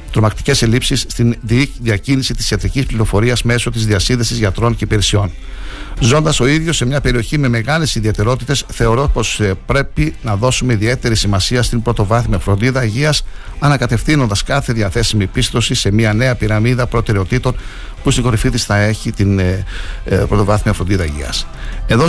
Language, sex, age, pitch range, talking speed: Greek, male, 60-79, 105-135 Hz, 145 wpm